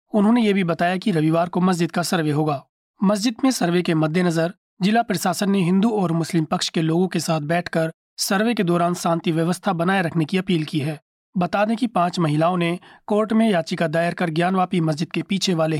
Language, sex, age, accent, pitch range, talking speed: Hindi, male, 30-49, native, 165-200 Hz, 215 wpm